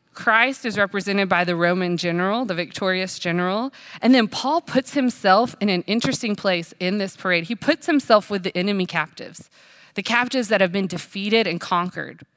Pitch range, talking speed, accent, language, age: 180-230 Hz, 180 wpm, American, English, 20-39